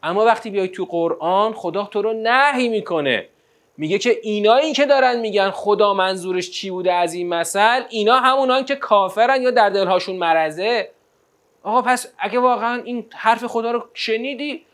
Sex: male